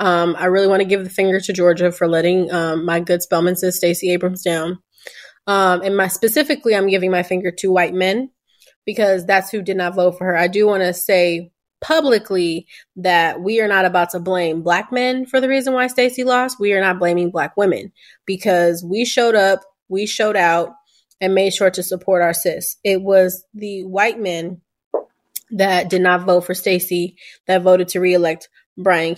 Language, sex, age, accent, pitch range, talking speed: English, female, 20-39, American, 180-205 Hz, 195 wpm